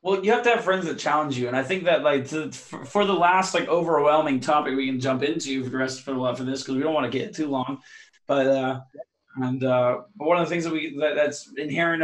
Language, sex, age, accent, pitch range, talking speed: English, male, 20-39, American, 135-160 Hz, 285 wpm